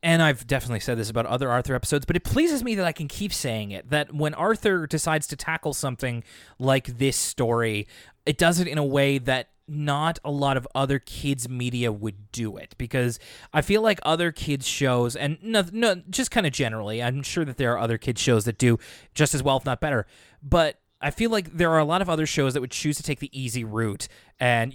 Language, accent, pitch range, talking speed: English, American, 120-160 Hz, 235 wpm